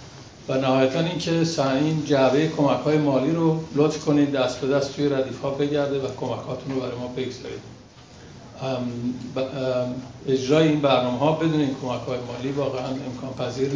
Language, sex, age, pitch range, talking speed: Persian, male, 50-69, 125-150 Hz, 135 wpm